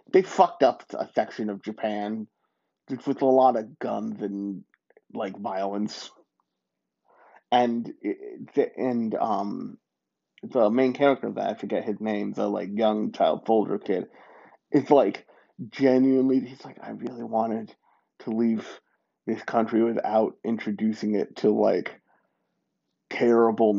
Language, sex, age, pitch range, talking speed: English, male, 30-49, 110-130 Hz, 135 wpm